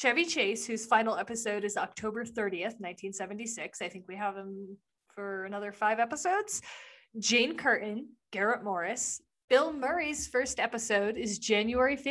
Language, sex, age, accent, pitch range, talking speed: English, female, 30-49, American, 195-240 Hz, 140 wpm